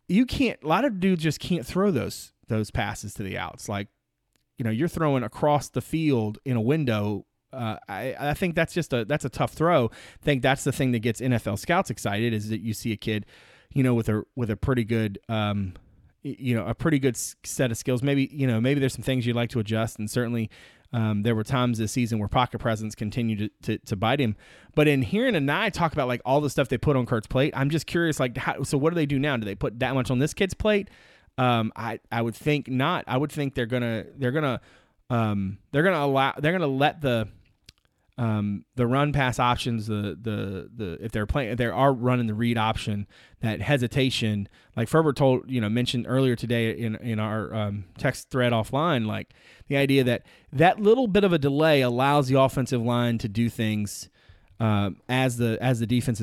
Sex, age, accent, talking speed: male, 30-49, American, 225 wpm